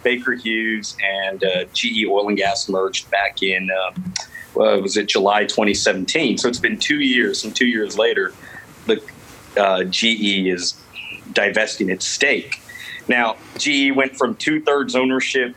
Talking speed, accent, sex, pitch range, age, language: 150 wpm, American, male, 105-130 Hz, 40-59, English